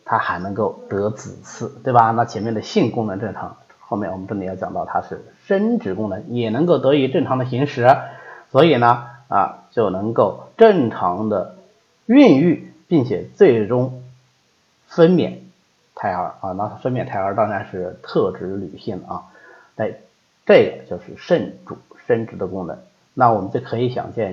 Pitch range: 105-140 Hz